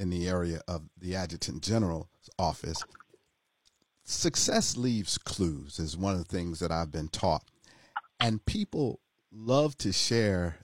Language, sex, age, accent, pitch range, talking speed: English, male, 50-69, American, 90-120 Hz, 140 wpm